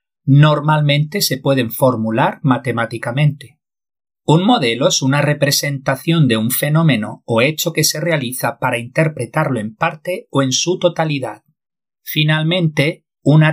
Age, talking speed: 40-59, 125 wpm